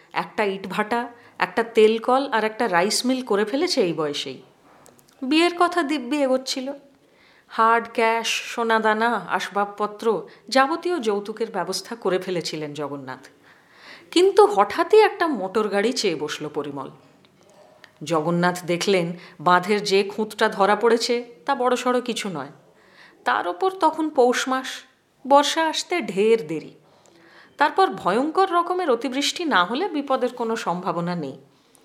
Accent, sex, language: native, female, Hindi